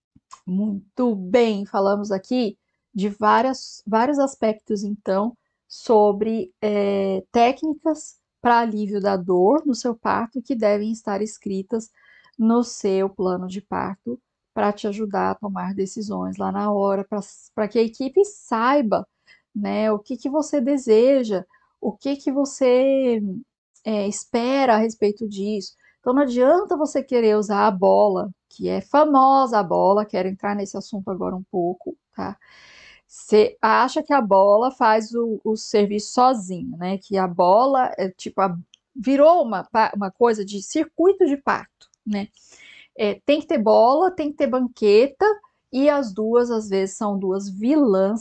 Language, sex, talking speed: Portuguese, female, 145 wpm